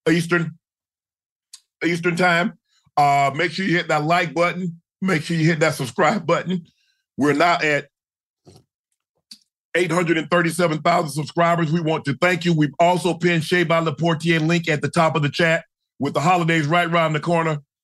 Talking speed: 160 wpm